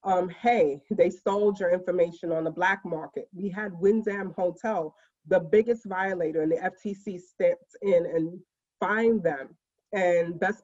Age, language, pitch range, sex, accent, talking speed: 30-49, English, 170-200 Hz, female, American, 150 wpm